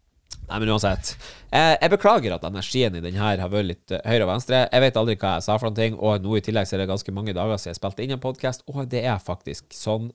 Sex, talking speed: male, 280 wpm